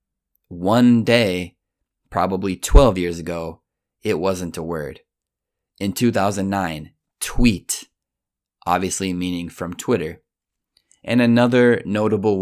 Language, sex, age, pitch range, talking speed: Italian, male, 20-39, 85-100 Hz, 95 wpm